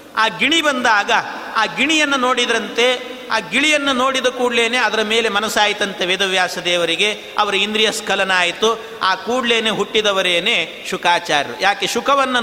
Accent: native